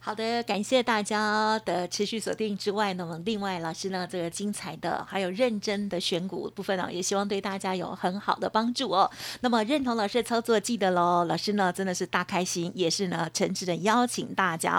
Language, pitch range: Chinese, 185-230 Hz